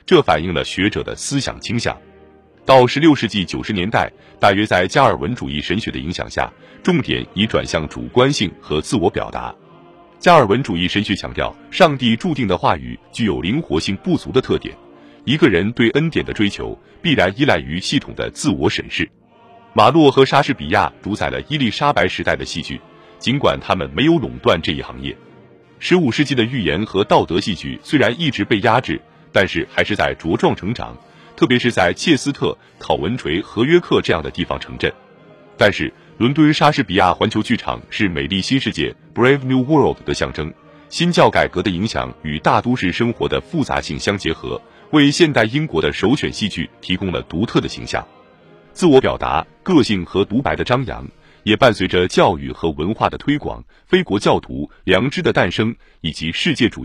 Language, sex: Chinese, male